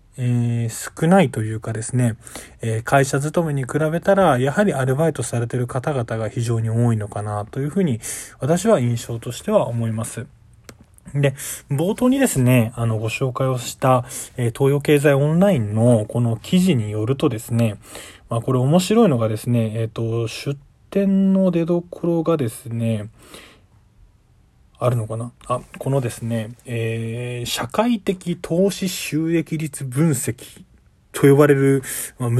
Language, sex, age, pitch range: Japanese, male, 20-39, 115-160 Hz